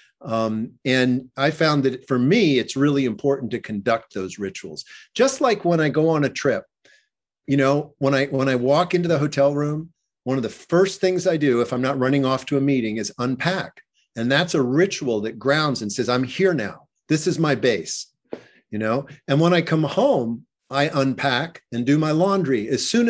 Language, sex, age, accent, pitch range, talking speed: English, male, 50-69, American, 125-155 Hz, 210 wpm